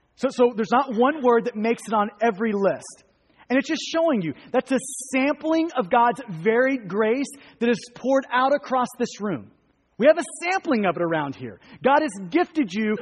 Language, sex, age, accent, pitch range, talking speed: English, male, 30-49, American, 230-275 Hz, 200 wpm